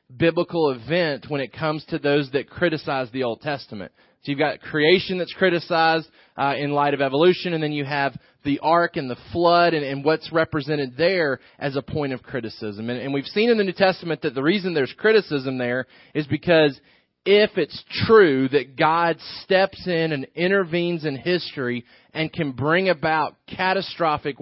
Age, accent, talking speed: 30-49, American, 180 wpm